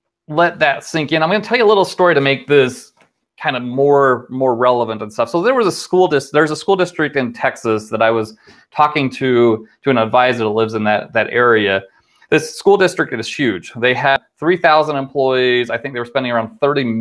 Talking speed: 225 wpm